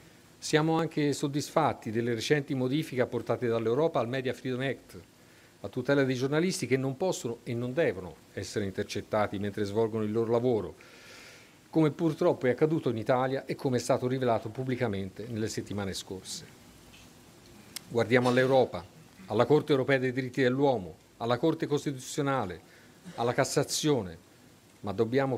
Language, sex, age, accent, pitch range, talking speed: Italian, male, 50-69, native, 115-145 Hz, 140 wpm